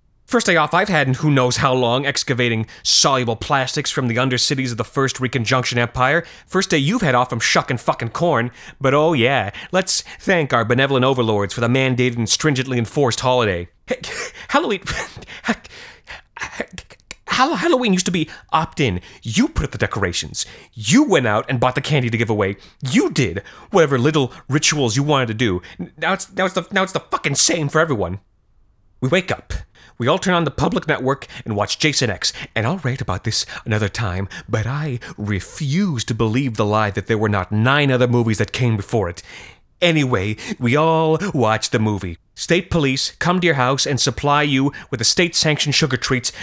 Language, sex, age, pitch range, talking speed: English, male, 30-49, 115-155 Hz, 190 wpm